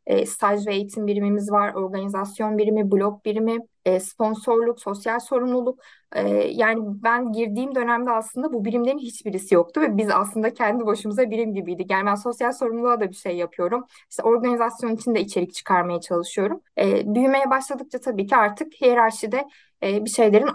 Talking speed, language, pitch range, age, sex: 165 wpm, Turkish, 200-245 Hz, 20-39, female